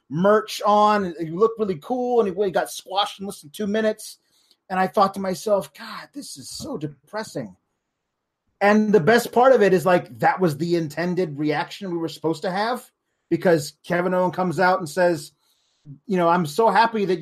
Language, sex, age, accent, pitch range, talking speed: English, male, 30-49, American, 175-245 Hz, 200 wpm